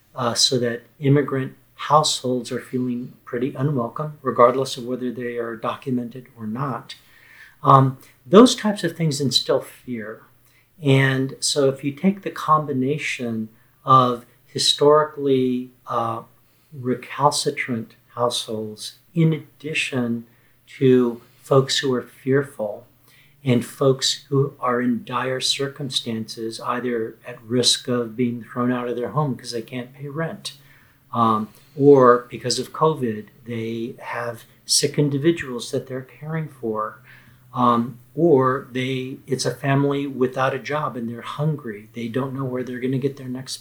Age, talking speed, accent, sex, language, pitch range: 50-69, 140 wpm, American, male, English, 120-140 Hz